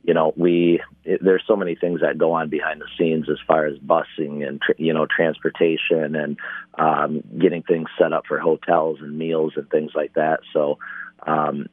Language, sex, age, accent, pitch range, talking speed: English, male, 40-59, American, 75-90 Hz, 190 wpm